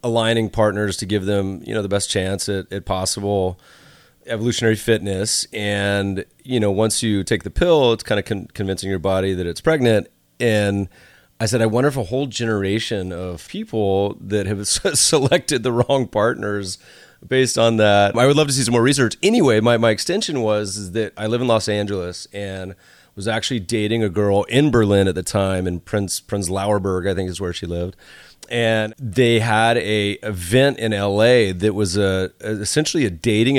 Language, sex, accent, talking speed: English, male, American, 190 wpm